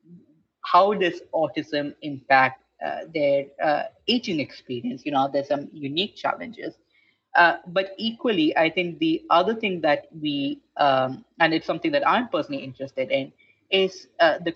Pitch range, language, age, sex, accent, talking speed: 135-195 Hz, English, 30-49, female, Indian, 155 wpm